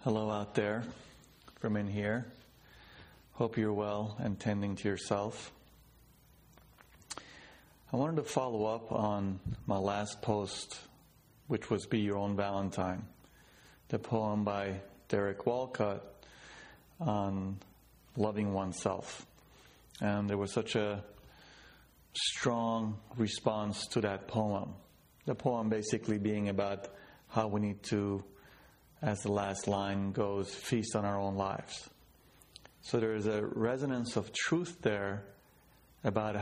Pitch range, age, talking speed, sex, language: 100-115 Hz, 30-49, 120 wpm, male, English